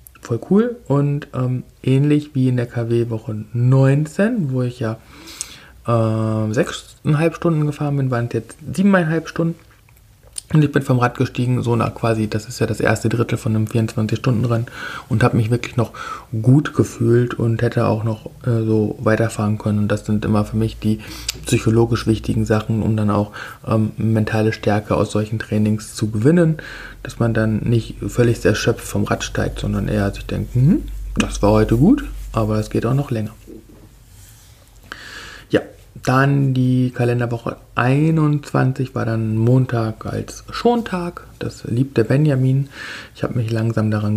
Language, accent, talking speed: German, German, 160 wpm